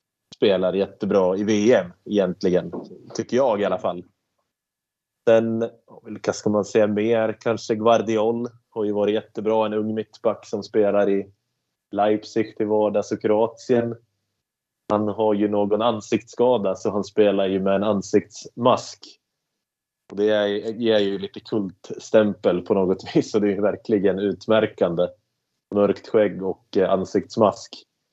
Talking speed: 135 wpm